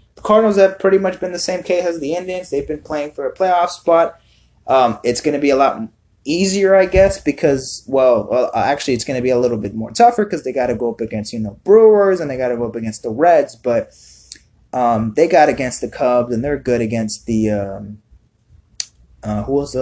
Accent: American